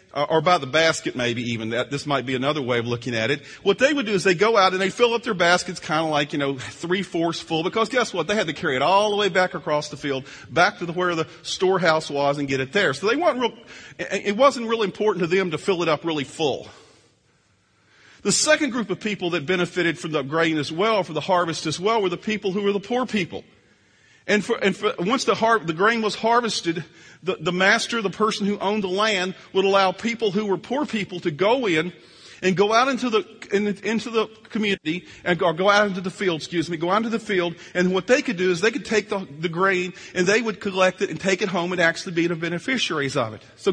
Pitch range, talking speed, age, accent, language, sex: 165-215 Hz, 260 wpm, 40-59, American, English, male